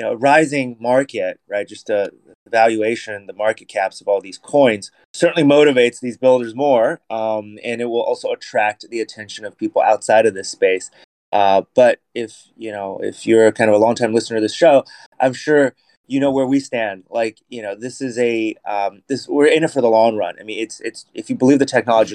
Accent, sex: American, male